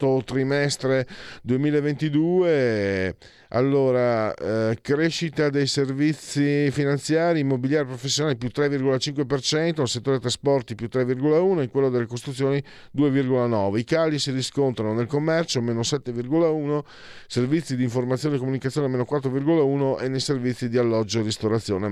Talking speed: 125 wpm